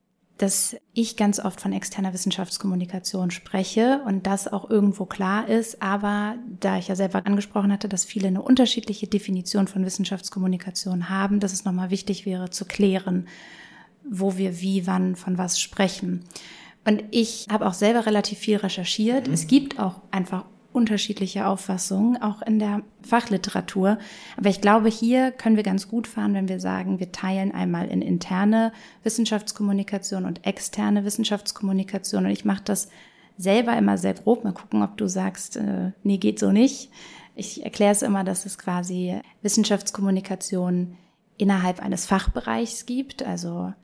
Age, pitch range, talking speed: 30-49, 185-210 Hz, 155 wpm